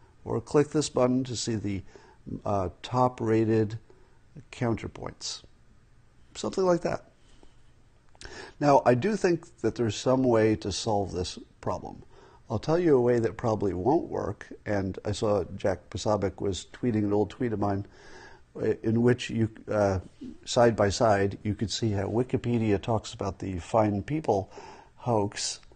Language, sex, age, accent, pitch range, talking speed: English, male, 50-69, American, 100-120 Hz, 150 wpm